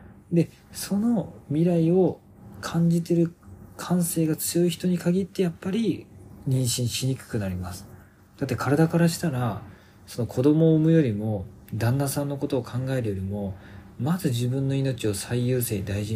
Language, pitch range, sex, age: Japanese, 100-150 Hz, male, 40-59